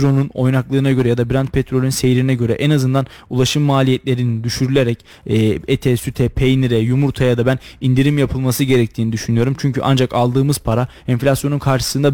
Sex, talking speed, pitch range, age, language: male, 150 wpm, 130-150 Hz, 20-39, Turkish